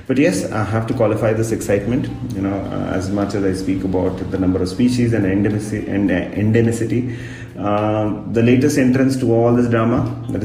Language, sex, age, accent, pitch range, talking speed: English, male, 30-49, Indian, 100-115 Hz, 180 wpm